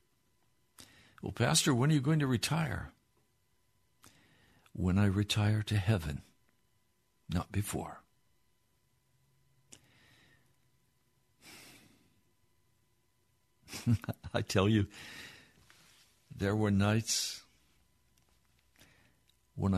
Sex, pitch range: male, 90-115 Hz